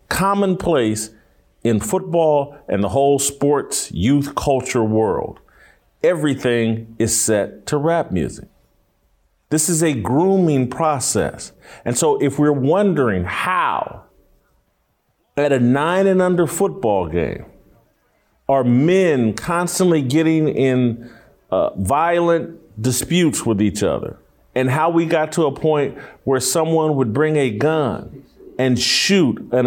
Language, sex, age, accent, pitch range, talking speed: English, male, 50-69, American, 130-185 Hz, 125 wpm